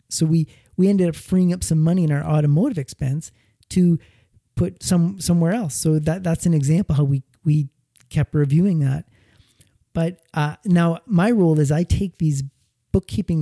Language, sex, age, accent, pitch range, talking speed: English, male, 30-49, American, 135-165 Hz, 175 wpm